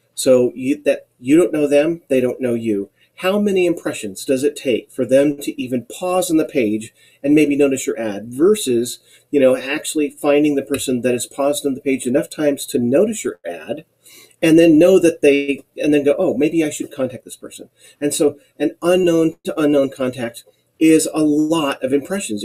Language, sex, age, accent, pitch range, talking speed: English, male, 40-59, American, 125-160 Hz, 205 wpm